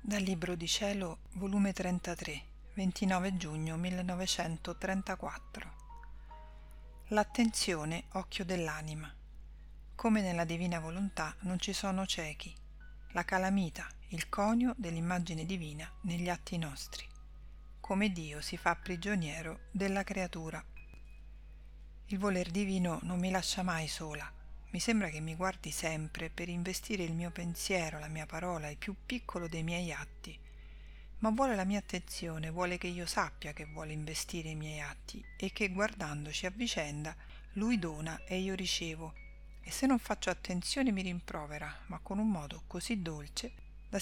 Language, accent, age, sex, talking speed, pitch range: Italian, native, 40-59, female, 140 wpm, 155-195 Hz